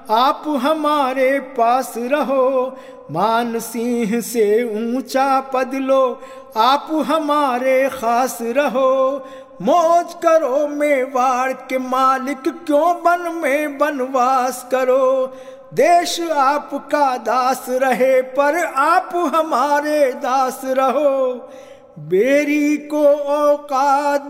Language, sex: Hindi, male